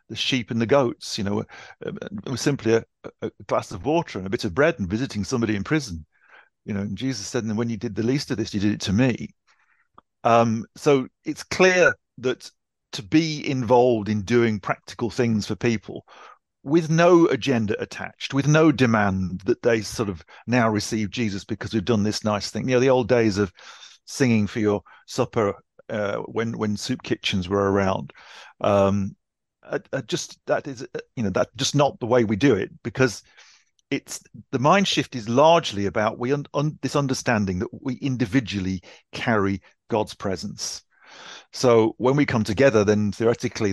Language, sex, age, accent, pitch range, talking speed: English, male, 50-69, British, 105-130 Hz, 190 wpm